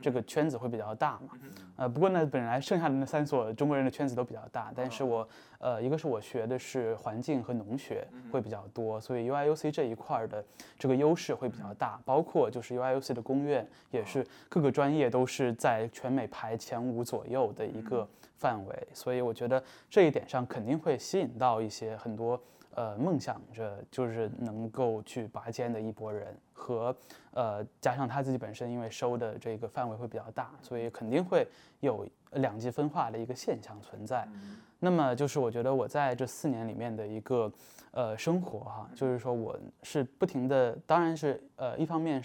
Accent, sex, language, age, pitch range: native, male, Chinese, 20-39, 115-145 Hz